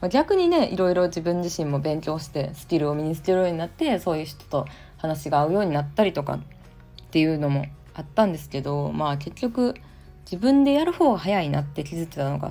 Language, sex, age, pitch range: Japanese, female, 20-39, 145-210 Hz